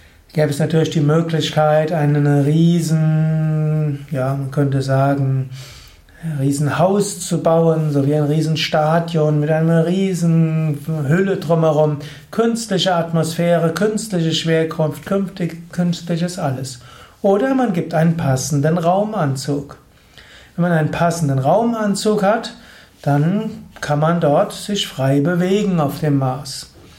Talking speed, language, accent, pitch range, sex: 120 wpm, German, German, 150-175 Hz, male